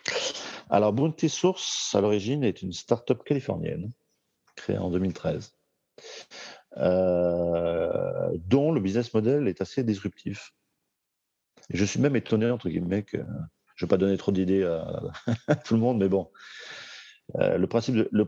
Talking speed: 145 wpm